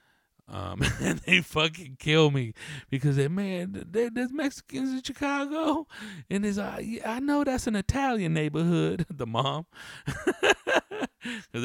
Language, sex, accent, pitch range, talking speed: English, male, American, 120-190 Hz, 140 wpm